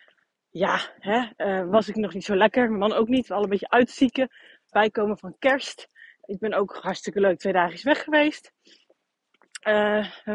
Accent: Dutch